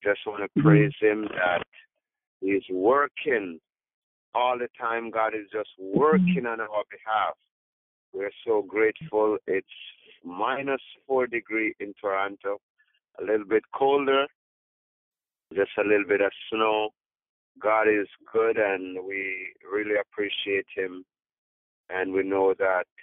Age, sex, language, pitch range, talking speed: 50-69, male, English, 95-125 Hz, 130 wpm